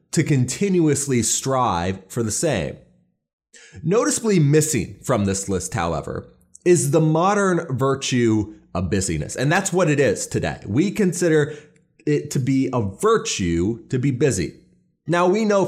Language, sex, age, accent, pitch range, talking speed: English, male, 30-49, American, 120-165 Hz, 140 wpm